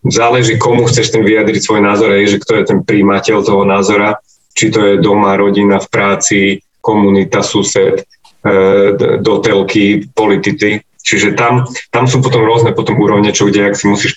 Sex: male